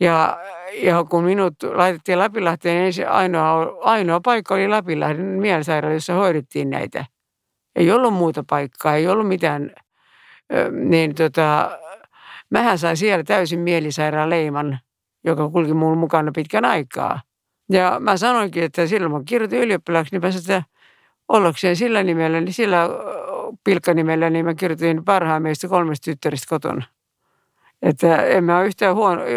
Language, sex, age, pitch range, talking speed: Finnish, female, 60-79, 155-190 Hz, 135 wpm